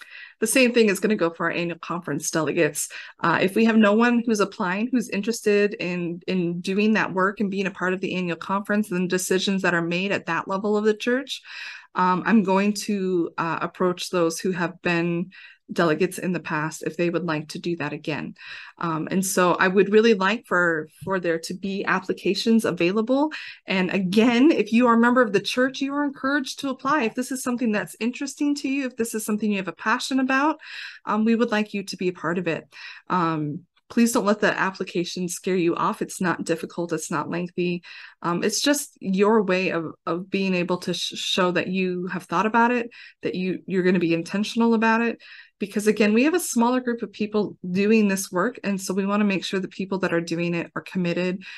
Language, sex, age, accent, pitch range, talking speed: English, female, 20-39, American, 175-220 Hz, 220 wpm